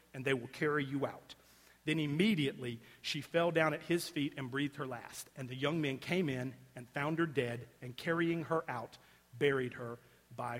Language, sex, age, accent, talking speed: English, male, 40-59, American, 200 wpm